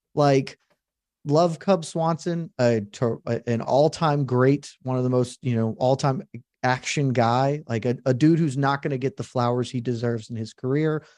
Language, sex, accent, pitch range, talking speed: English, male, American, 120-155 Hz, 190 wpm